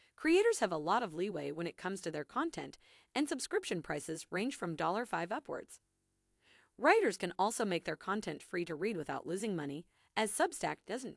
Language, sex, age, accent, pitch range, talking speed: English, female, 30-49, American, 160-245 Hz, 185 wpm